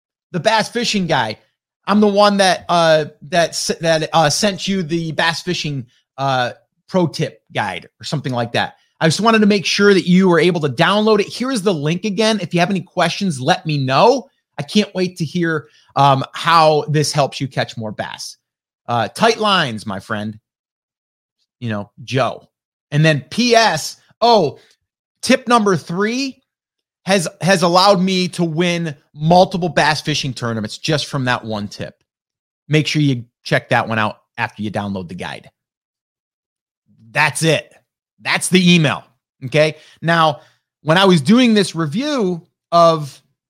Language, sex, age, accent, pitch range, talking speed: English, male, 30-49, American, 140-185 Hz, 165 wpm